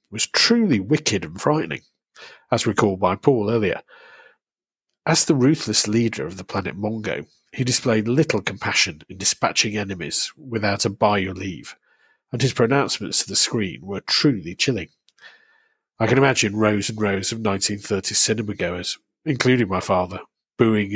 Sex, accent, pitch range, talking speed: male, British, 100-130 Hz, 155 wpm